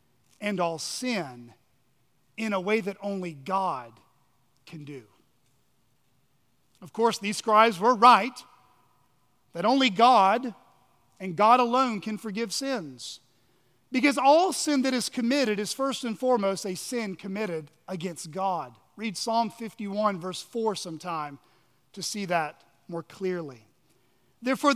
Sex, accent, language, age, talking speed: male, American, English, 40-59, 130 wpm